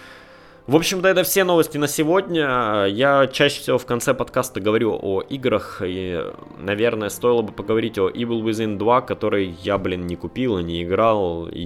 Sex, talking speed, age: male, 175 wpm, 20-39